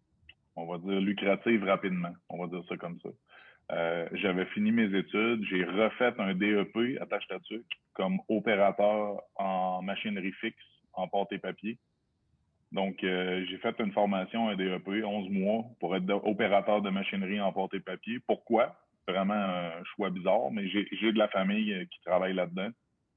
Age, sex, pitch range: 30-49, male, 95-115 Hz